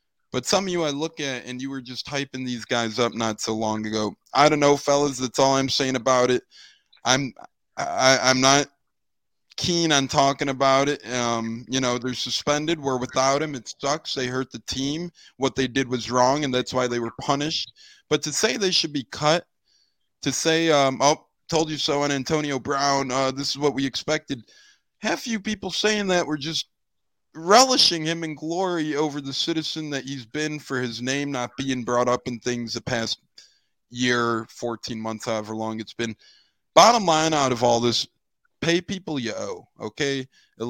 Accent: American